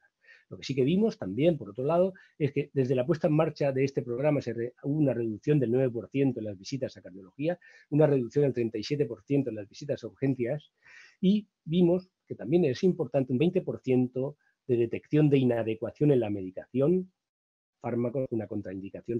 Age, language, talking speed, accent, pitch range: 40-59, English, 180 wpm, Spanish, 115-150 Hz